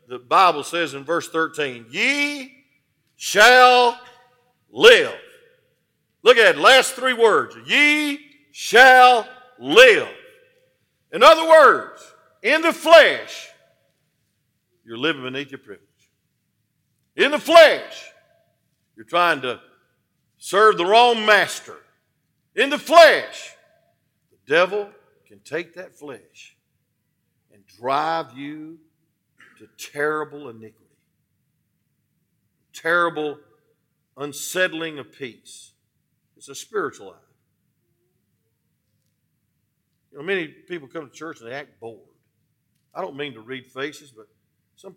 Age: 50-69